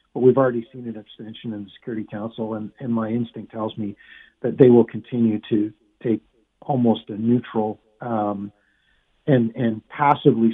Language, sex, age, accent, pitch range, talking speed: English, male, 50-69, American, 110-125 Hz, 165 wpm